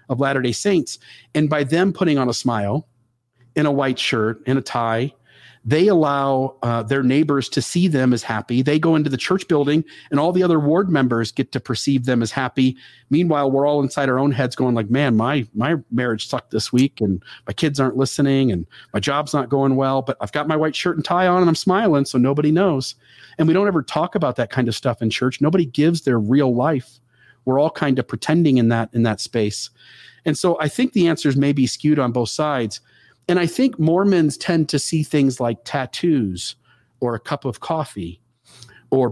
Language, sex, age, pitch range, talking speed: English, male, 40-59, 120-150 Hz, 220 wpm